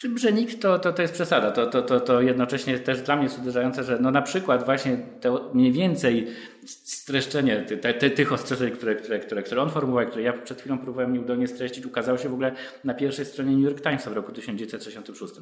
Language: Polish